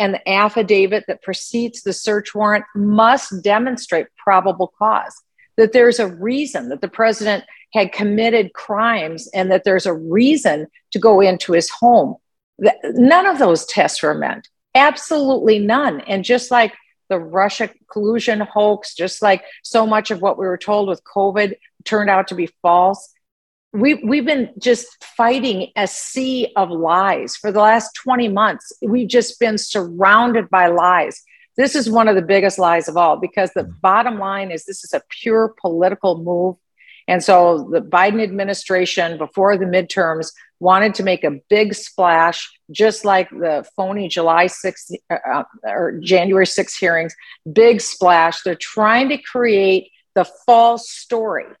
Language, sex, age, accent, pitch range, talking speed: English, female, 50-69, American, 185-230 Hz, 160 wpm